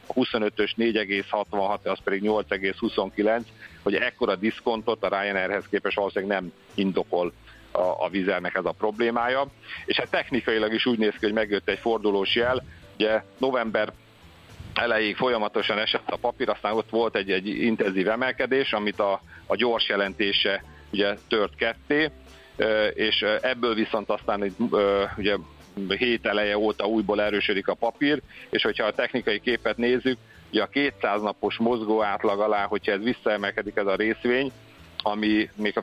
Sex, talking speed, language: male, 150 wpm, Hungarian